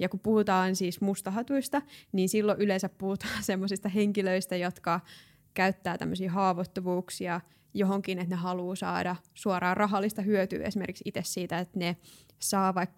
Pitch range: 180-205 Hz